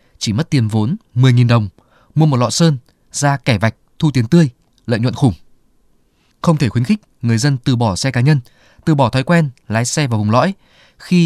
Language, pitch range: Vietnamese, 120-160 Hz